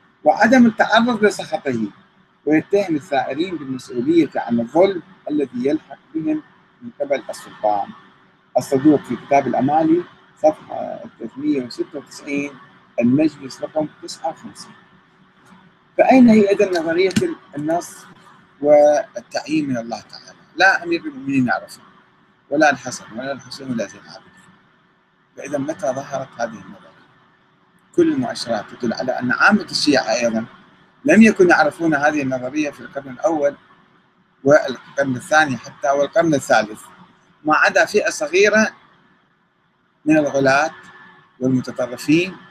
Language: Arabic